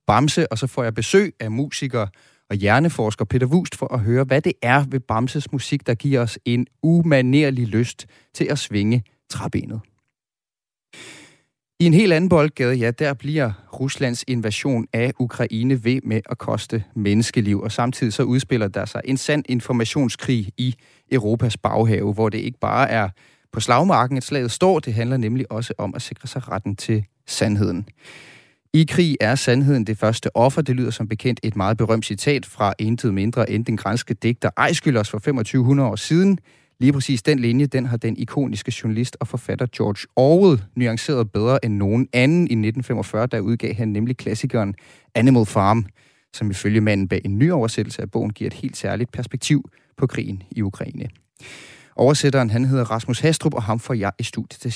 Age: 30-49